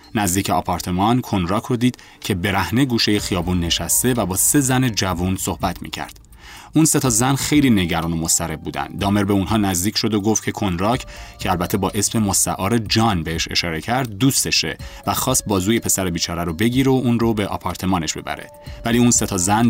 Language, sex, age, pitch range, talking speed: Persian, male, 30-49, 90-115 Hz, 190 wpm